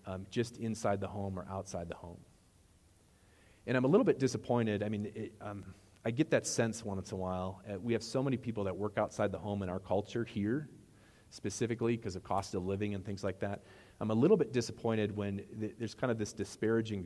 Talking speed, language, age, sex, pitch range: 220 wpm, English, 40-59, male, 95-115 Hz